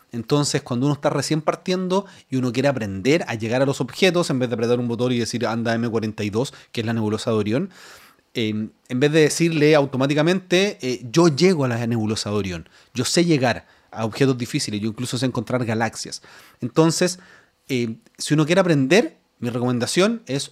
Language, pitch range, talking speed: Spanish, 125-175 Hz, 185 wpm